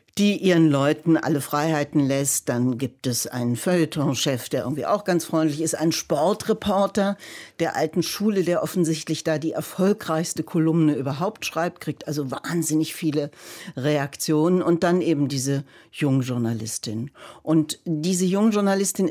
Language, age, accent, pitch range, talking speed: German, 60-79, German, 135-170 Hz, 135 wpm